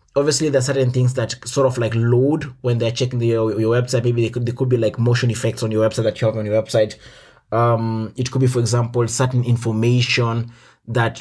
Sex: male